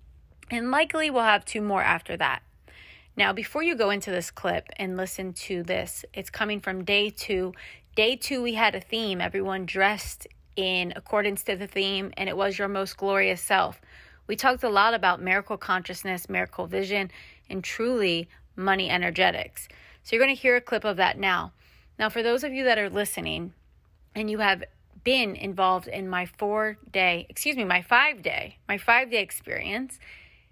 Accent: American